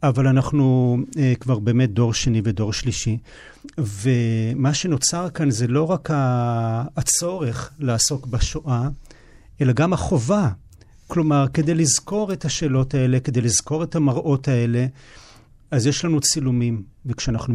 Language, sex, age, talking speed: Hebrew, male, 40-59, 125 wpm